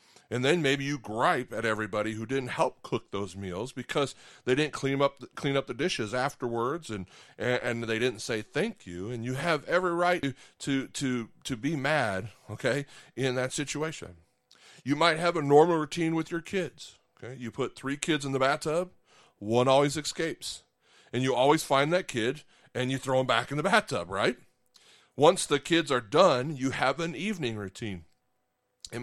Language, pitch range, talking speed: English, 110-150 Hz, 190 wpm